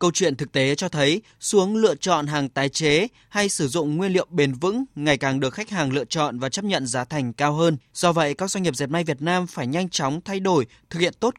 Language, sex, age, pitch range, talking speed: Vietnamese, male, 20-39, 135-190 Hz, 265 wpm